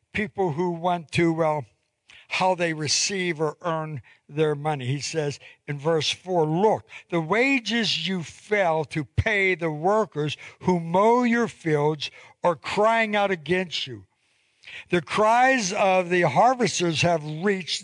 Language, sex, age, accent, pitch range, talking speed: English, male, 60-79, American, 150-190 Hz, 140 wpm